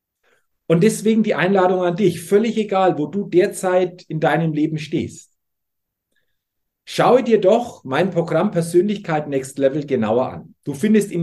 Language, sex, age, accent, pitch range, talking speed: German, male, 50-69, German, 135-190 Hz, 150 wpm